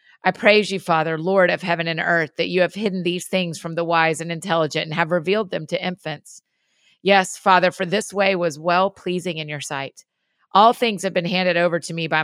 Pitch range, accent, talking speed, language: 160-190 Hz, American, 220 wpm, English